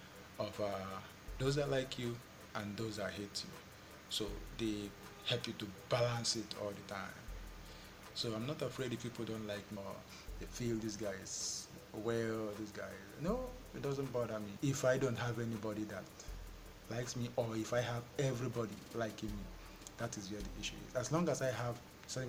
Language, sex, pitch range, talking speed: English, male, 105-120 Hz, 190 wpm